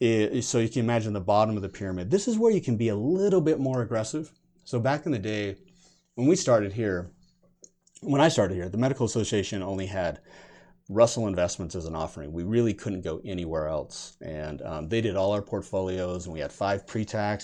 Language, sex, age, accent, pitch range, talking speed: English, male, 30-49, American, 85-115 Hz, 210 wpm